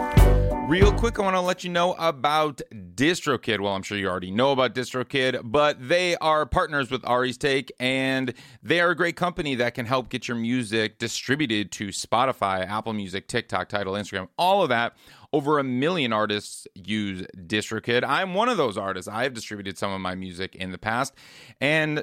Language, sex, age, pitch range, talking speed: English, male, 30-49, 105-140 Hz, 190 wpm